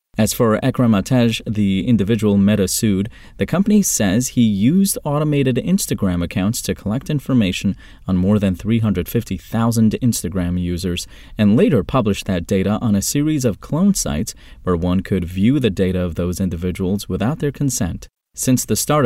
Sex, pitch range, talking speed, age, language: male, 95-125 Hz, 155 wpm, 30-49, English